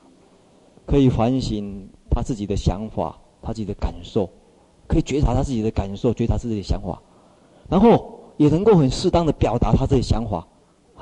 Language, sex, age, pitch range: Chinese, male, 30-49, 95-125 Hz